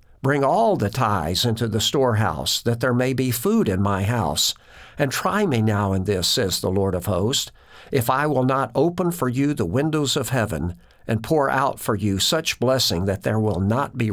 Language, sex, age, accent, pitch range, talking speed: English, male, 50-69, American, 100-130 Hz, 210 wpm